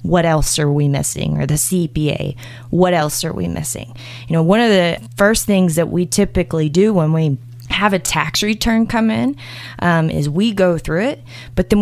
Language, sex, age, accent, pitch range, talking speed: English, female, 20-39, American, 145-220 Hz, 205 wpm